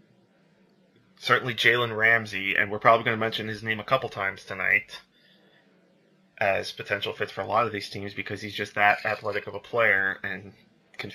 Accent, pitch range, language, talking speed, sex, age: American, 100-115 Hz, English, 185 wpm, male, 20-39